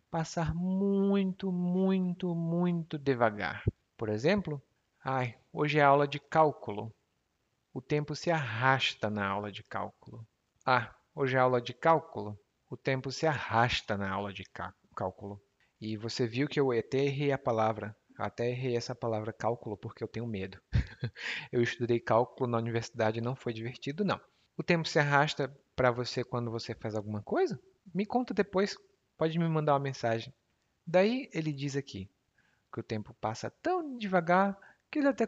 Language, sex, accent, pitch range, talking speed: Portuguese, male, Brazilian, 110-160 Hz, 165 wpm